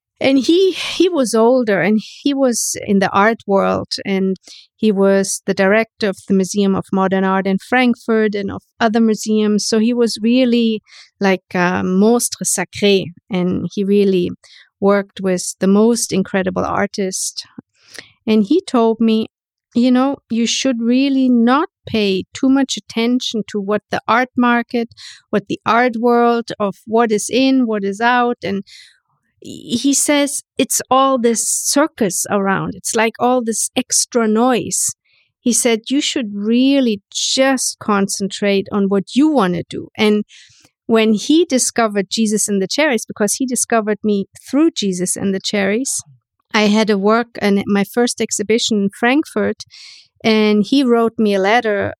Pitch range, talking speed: 200-240 Hz, 160 wpm